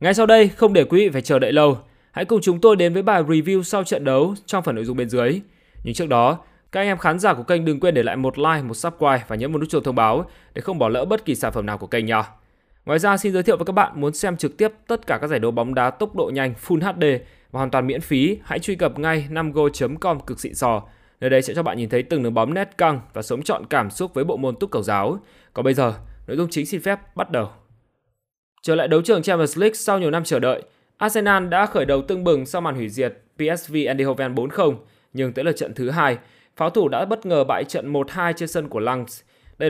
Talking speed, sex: 270 wpm, male